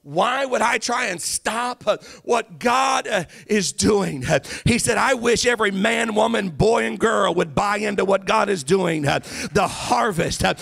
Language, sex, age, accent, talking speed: English, male, 50-69, American, 165 wpm